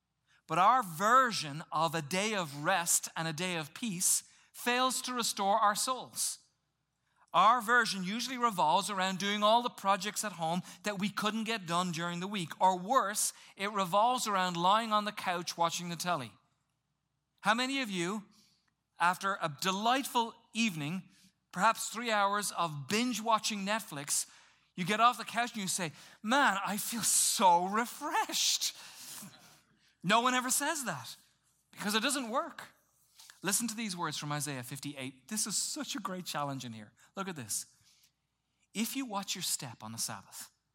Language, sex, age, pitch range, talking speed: English, male, 40-59, 170-230 Hz, 165 wpm